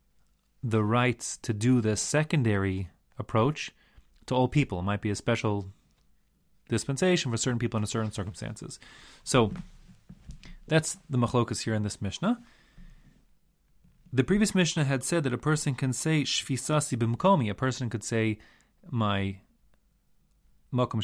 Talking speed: 135 wpm